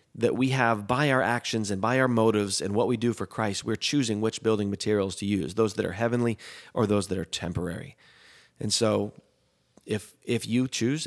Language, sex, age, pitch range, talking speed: English, male, 30-49, 100-125 Hz, 205 wpm